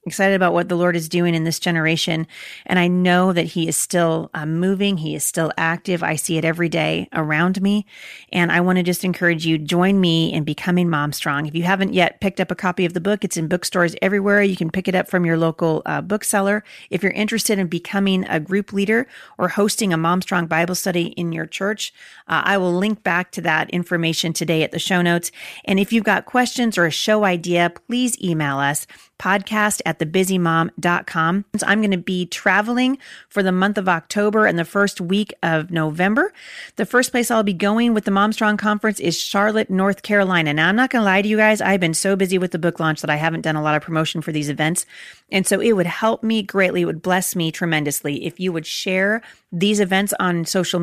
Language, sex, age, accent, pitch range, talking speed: English, female, 30-49, American, 170-200 Hz, 225 wpm